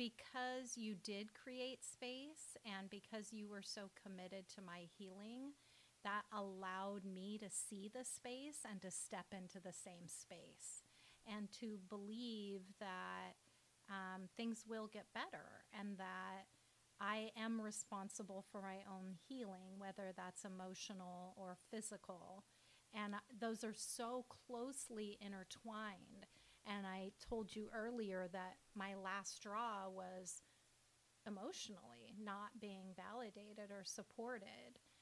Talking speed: 125 wpm